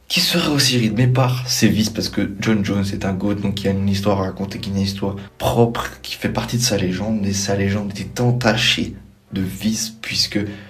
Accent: French